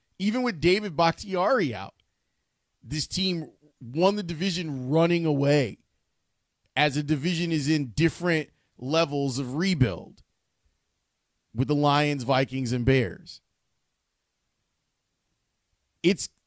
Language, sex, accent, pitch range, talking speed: English, male, American, 125-170 Hz, 100 wpm